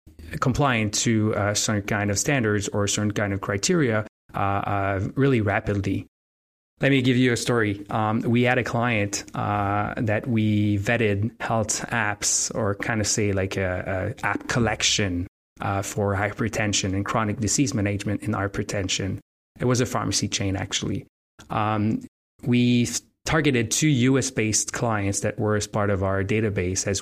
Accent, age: Canadian, 20-39